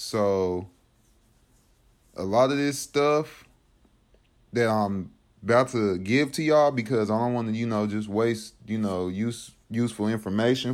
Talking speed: 150 wpm